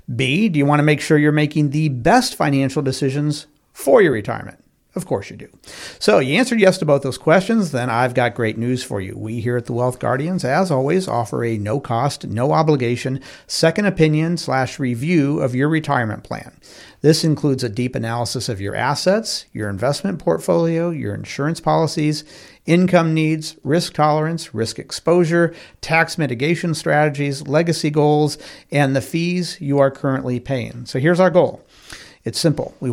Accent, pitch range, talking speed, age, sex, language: American, 130-165 Hz, 170 wpm, 50-69, male, English